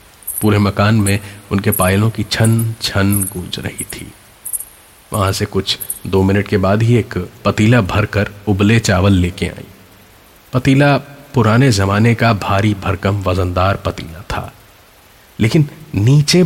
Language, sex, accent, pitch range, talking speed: Hindi, male, native, 100-140 Hz, 135 wpm